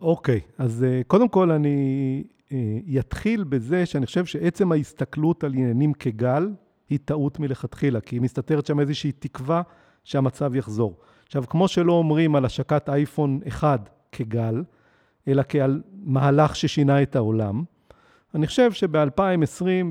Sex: male